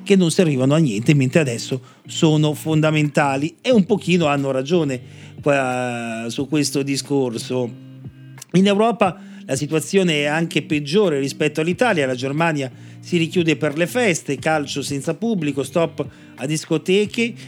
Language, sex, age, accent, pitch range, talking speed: Italian, male, 40-59, native, 140-180 Hz, 135 wpm